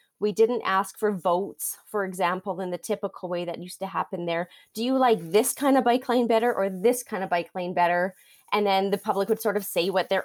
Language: English